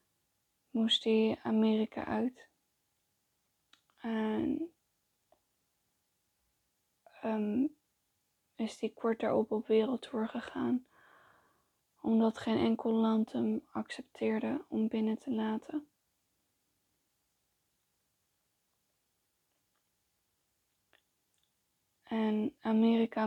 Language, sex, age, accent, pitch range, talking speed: Dutch, female, 20-39, Dutch, 220-235 Hz, 65 wpm